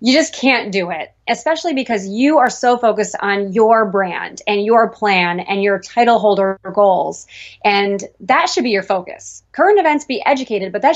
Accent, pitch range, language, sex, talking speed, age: American, 195-230 Hz, English, female, 185 wpm, 20-39